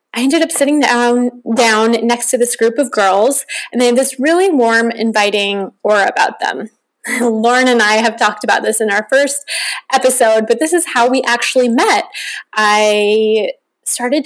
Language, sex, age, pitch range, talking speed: English, female, 20-39, 230-285 Hz, 175 wpm